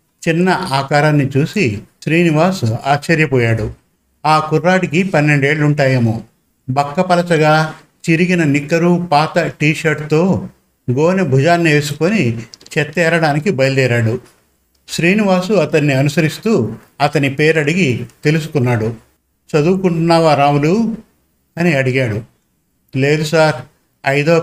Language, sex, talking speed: Telugu, male, 80 wpm